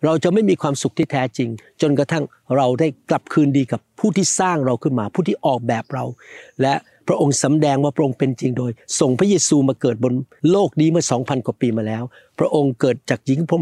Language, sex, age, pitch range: Thai, male, 60-79, 125-155 Hz